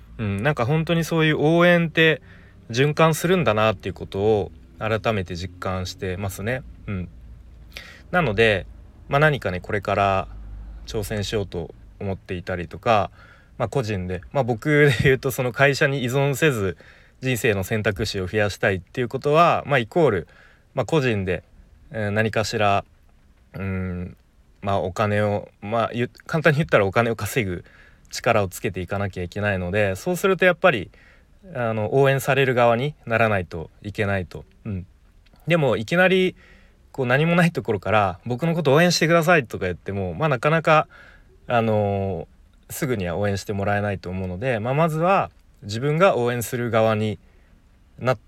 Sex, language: male, Japanese